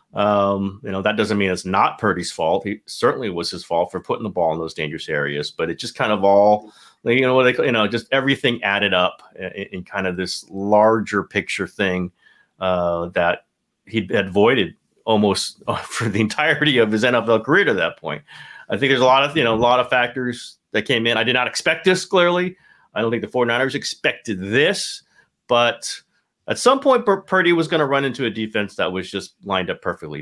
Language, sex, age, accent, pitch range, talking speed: English, male, 30-49, American, 100-140 Hz, 215 wpm